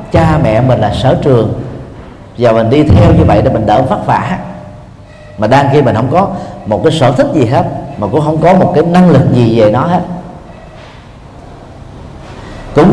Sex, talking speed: male, 190 wpm